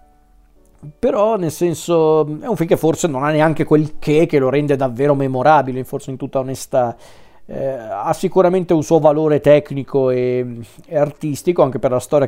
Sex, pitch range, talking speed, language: male, 135-165 Hz, 175 wpm, Italian